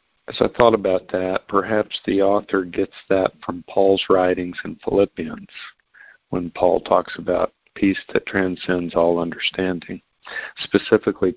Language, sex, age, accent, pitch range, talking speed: English, male, 50-69, American, 90-105 Hz, 130 wpm